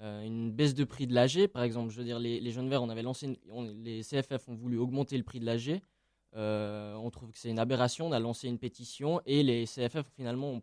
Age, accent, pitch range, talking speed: 20-39, French, 115-140 Hz, 260 wpm